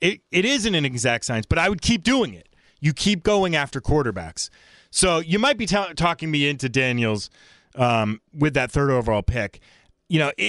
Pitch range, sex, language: 115-160 Hz, male, English